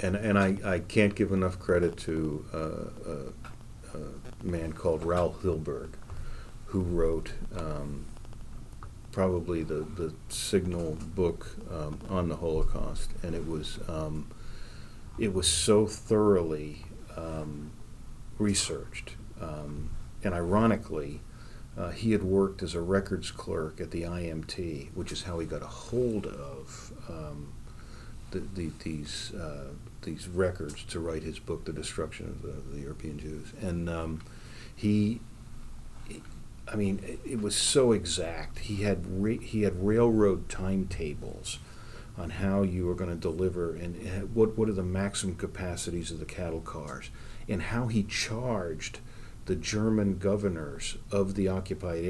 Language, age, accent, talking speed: English, 40-59, American, 140 wpm